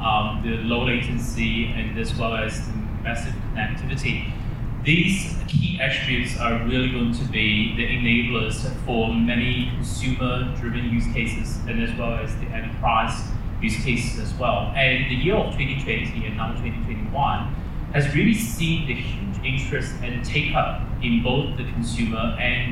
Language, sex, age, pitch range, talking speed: English, male, 30-49, 115-130 Hz, 150 wpm